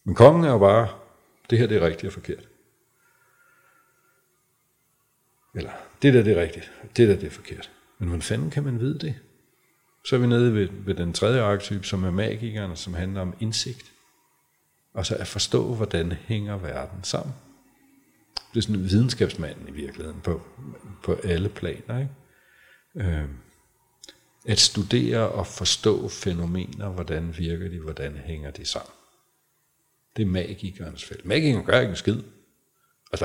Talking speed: 160 wpm